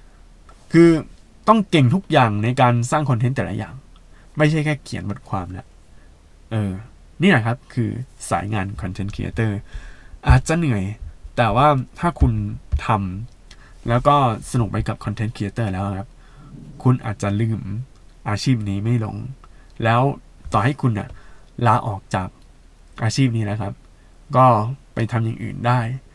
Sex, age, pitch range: male, 20-39, 105-145 Hz